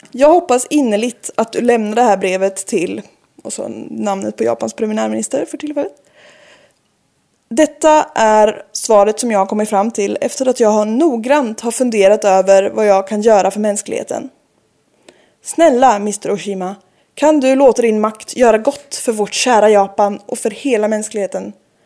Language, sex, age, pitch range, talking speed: Swedish, female, 20-39, 205-280 Hz, 160 wpm